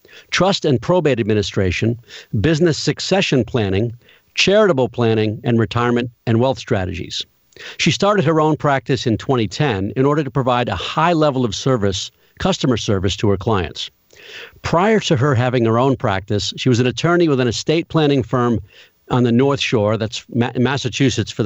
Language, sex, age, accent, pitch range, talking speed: English, male, 50-69, American, 110-140 Hz, 160 wpm